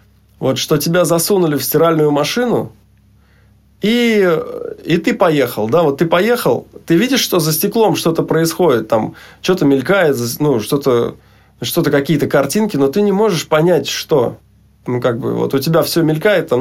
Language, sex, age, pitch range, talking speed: Russian, male, 20-39, 130-170 Hz, 160 wpm